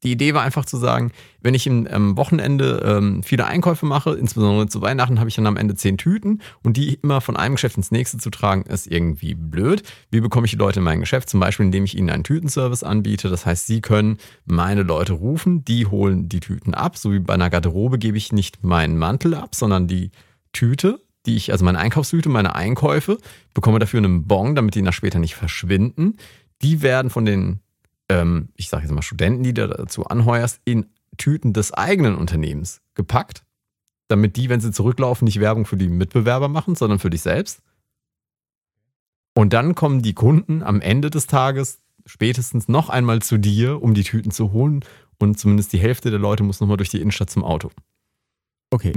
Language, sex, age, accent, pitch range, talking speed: German, male, 30-49, German, 100-130 Hz, 200 wpm